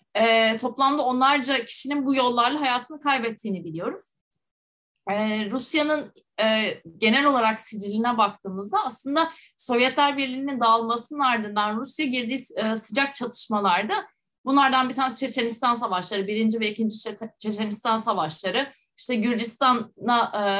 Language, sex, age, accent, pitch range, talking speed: Turkish, female, 30-49, native, 215-270 Hz, 105 wpm